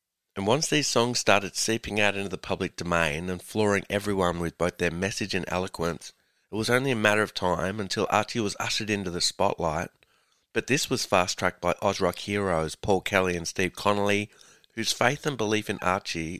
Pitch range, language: 85-110 Hz, English